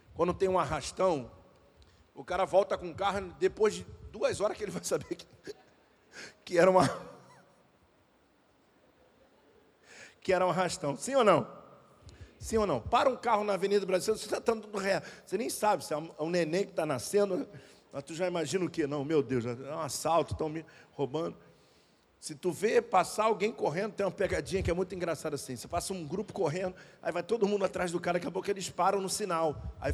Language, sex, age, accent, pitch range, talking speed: Portuguese, male, 50-69, Brazilian, 160-200 Hz, 205 wpm